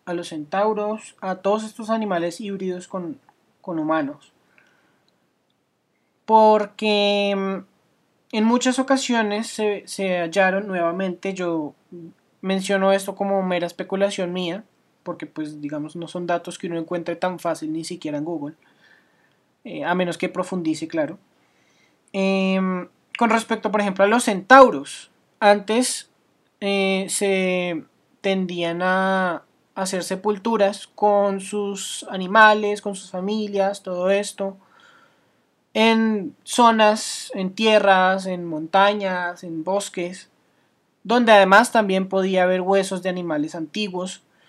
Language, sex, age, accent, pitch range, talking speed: Spanish, male, 20-39, Colombian, 180-210 Hz, 115 wpm